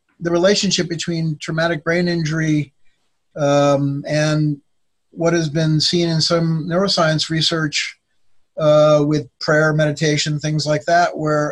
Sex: male